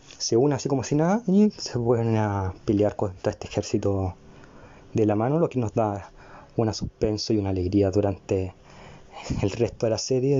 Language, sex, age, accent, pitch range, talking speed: Spanish, male, 20-39, Argentinian, 105-130 Hz, 180 wpm